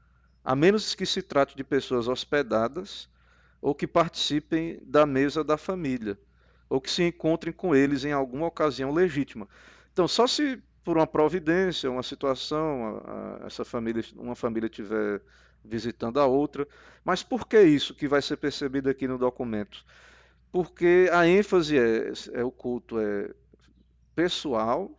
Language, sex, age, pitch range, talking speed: Portuguese, male, 50-69, 110-165 Hz, 140 wpm